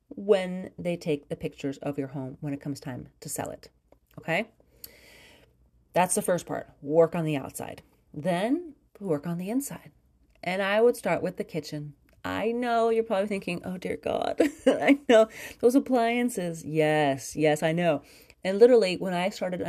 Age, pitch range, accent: 30-49, 155-220 Hz, American